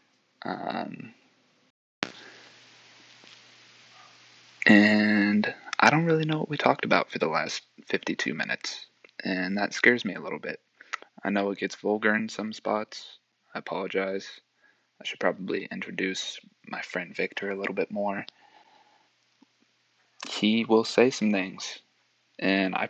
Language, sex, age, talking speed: English, male, 20-39, 130 wpm